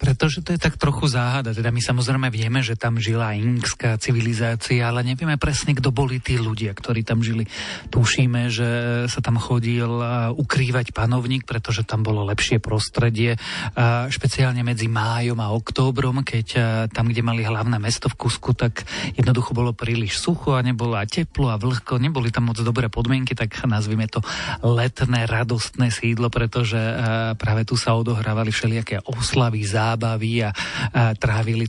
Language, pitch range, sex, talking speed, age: Slovak, 115-130 Hz, male, 150 wpm, 40-59